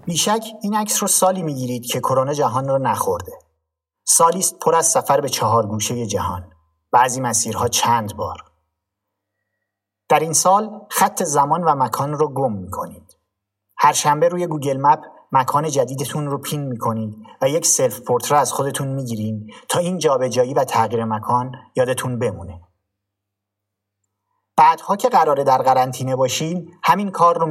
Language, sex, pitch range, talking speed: English, male, 100-145 Hz, 150 wpm